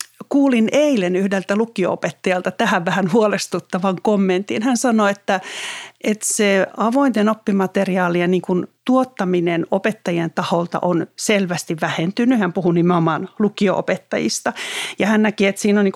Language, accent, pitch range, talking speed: Finnish, native, 185-235 Hz, 125 wpm